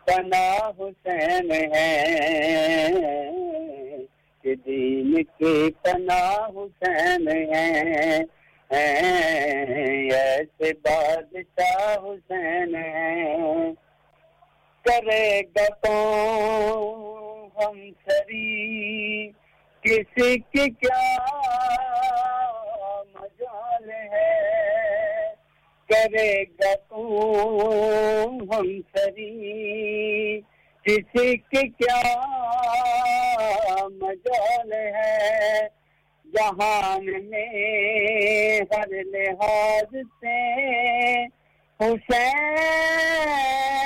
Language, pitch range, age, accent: English, 200-315 Hz, 50-69, Indian